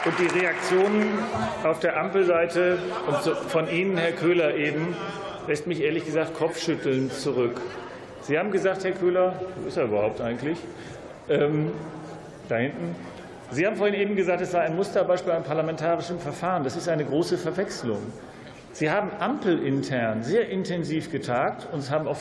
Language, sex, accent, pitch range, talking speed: German, male, German, 145-190 Hz, 155 wpm